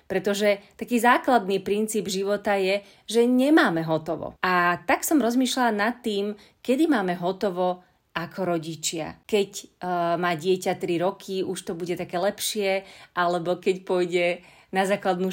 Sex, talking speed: female, 140 wpm